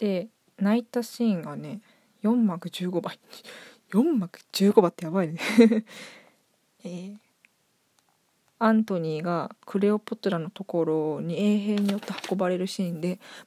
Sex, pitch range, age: female, 180-220 Hz, 20-39